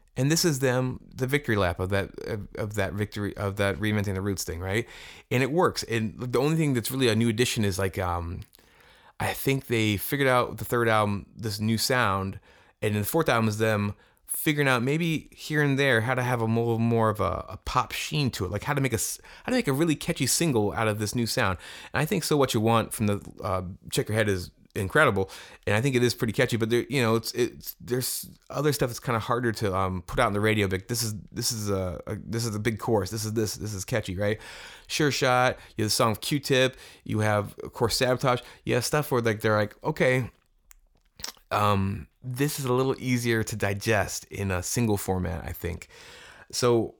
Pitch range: 100-130 Hz